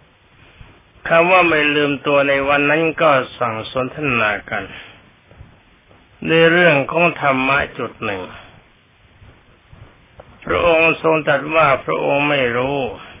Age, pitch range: 60-79, 110-145 Hz